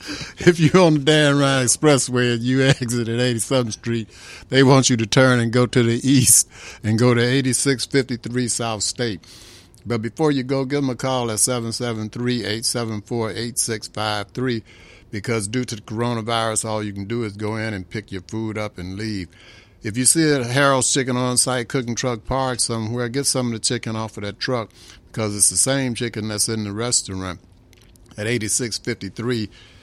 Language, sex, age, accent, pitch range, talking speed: English, male, 60-79, American, 105-125 Hz, 180 wpm